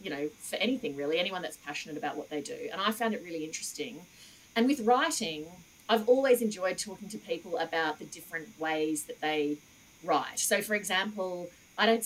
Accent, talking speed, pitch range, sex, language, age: Australian, 195 wpm, 155-210 Hz, female, English, 30-49